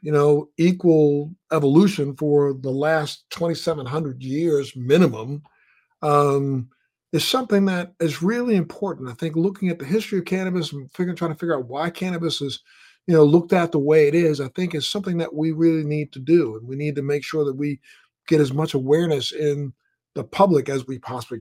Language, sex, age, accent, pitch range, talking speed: English, male, 50-69, American, 145-180 Hz, 195 wpm